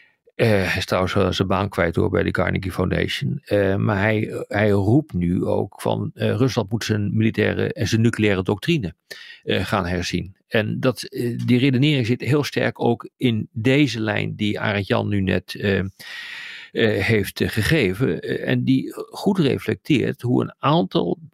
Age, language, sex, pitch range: 50-69, Dutch, male, 100-140 Hz